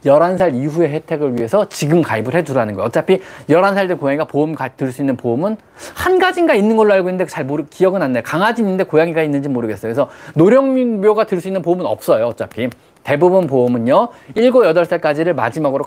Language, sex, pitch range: Korean, male, 150-230 Hz